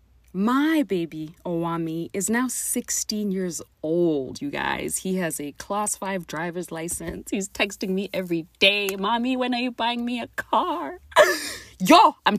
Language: English